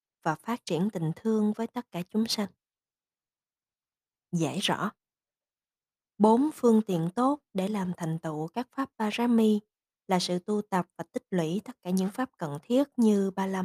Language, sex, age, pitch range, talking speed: Vietnamese, female, 20-39, 165-225 Hz, 170 wpm